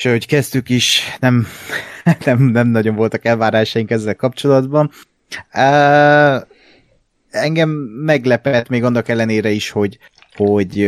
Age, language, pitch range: 30-49, Hungarian, 100-130 Hz